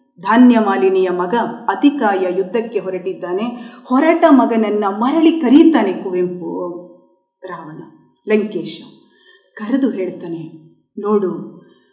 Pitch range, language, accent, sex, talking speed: 225-295 Hz, Kannada, native, female, 80 wpm